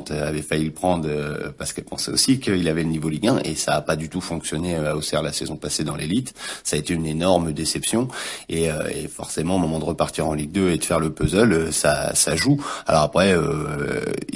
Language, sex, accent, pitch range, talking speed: French, male, French, 80-100 Hz, 230 wpm